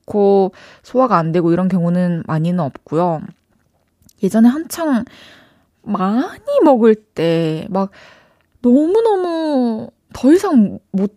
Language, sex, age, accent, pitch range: Korean, female, 20-39, native, 165-230 Hz